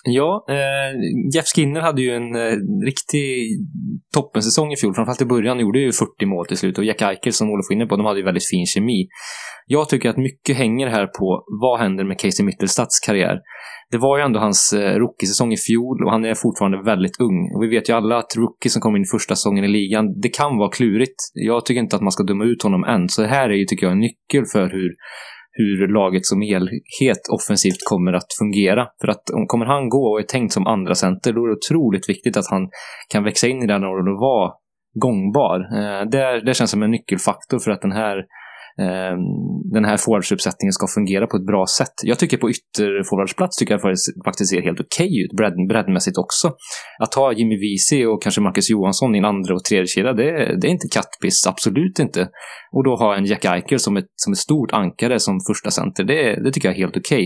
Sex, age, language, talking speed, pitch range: male, 20-39, English, 225 wpm, 100-125 Hz